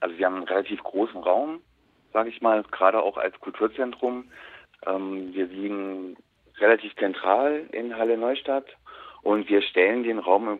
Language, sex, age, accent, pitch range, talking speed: German, male, 40-59, German, 95-115 Hz, 145 wpm